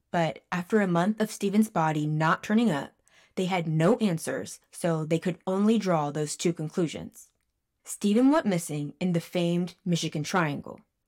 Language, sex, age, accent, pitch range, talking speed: English, female, 20-39, American, 165-205 Hz, 160 wpm